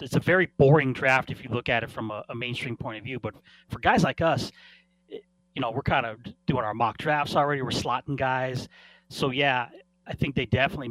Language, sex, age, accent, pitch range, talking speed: English, male, 30-49, American, 110-160 Hz, 225 wpm